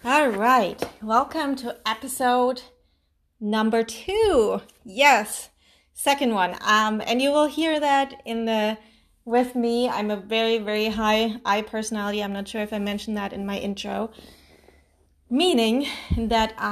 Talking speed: 140 wpm